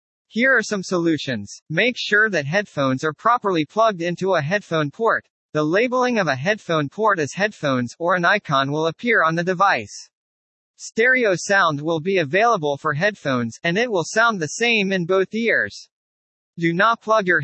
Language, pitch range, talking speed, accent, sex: English, 155-215 Hz, 175 wpm, American, male